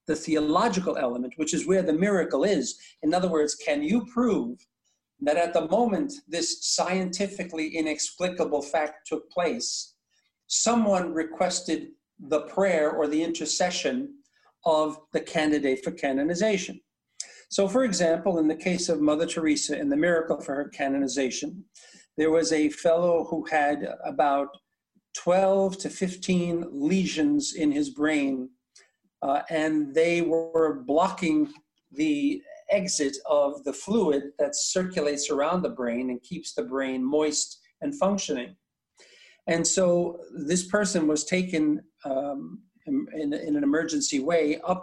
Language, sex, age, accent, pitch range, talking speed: English, male, 50-69, American, 150-195 Hz, 135 wpm